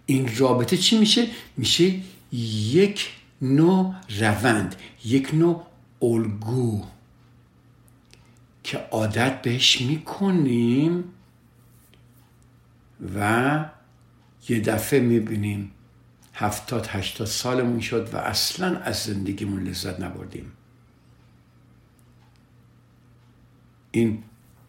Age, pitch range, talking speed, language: 60-79, 105-125 Hz, 75 wpm, Persian